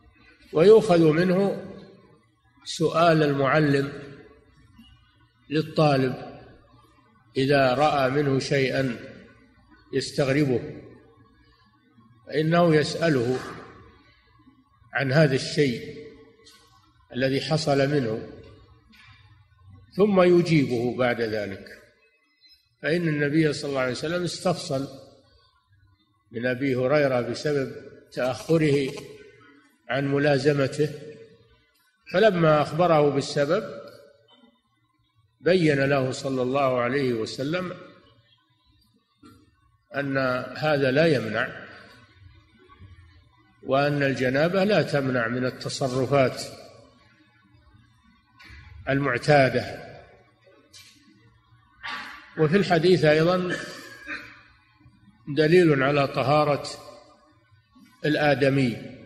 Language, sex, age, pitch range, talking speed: Arabic, male, 50-69, 120-150 Hz, 65 wpm